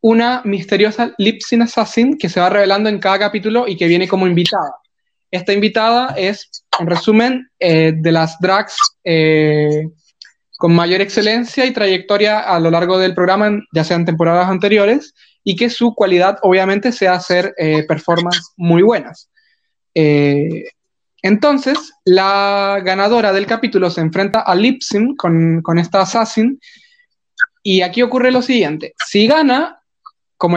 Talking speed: 140 wpm